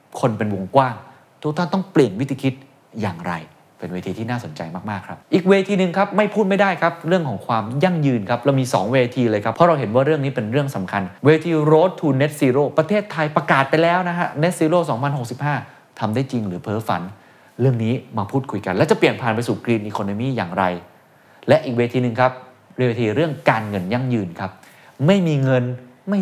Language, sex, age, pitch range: Thai, male, 20-39, 110-150 Hz